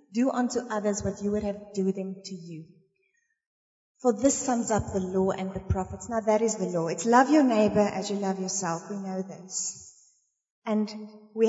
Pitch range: 200-250 Hz